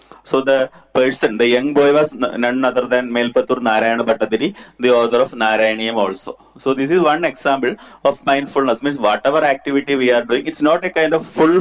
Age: 30-49